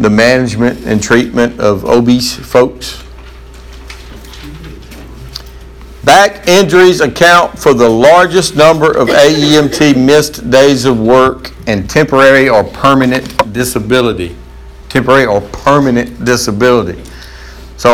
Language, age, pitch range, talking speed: English, 60-79, 90-150 Hz, 100 wpm